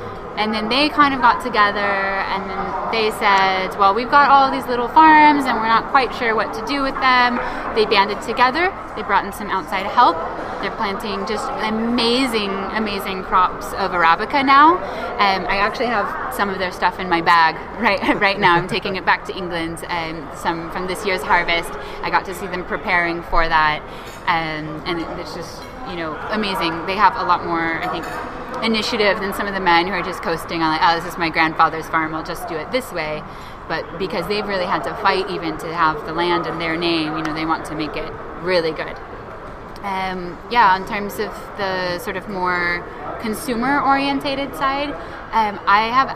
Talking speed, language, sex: 205 wpm, Czech, female